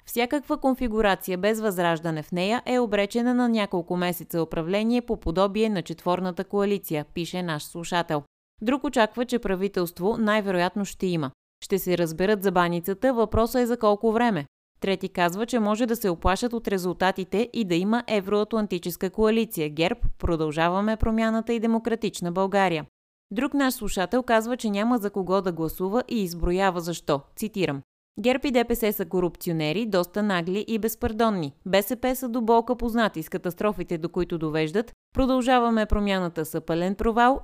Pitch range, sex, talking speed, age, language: 175-225 Hz, female, 150 wpm, 20-39, Bulgarian